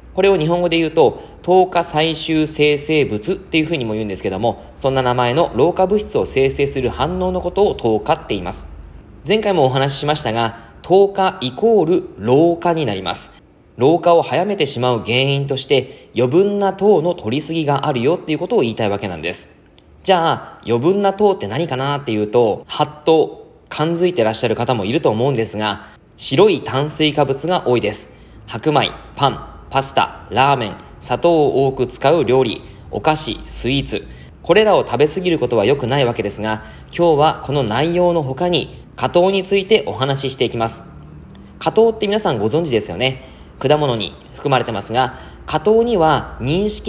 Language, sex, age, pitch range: Japanese, male, 20-39, 115-175 Hz